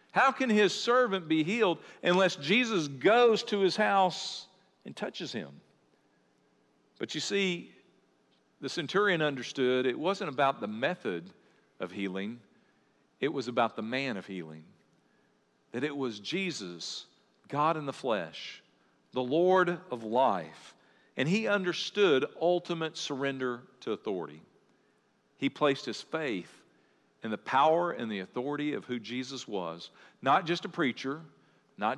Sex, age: male, 50-69